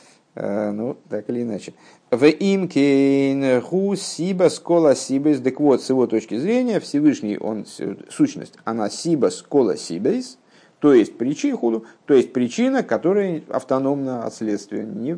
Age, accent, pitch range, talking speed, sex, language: 50-69, native, 115-170 Hz, 105 wpm, male, Russian